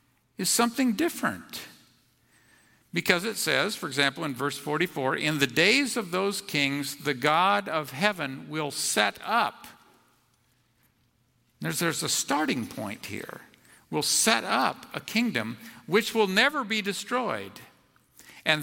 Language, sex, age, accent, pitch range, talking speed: English, male, 50-69, American, 150-235 Hz, 130 wpm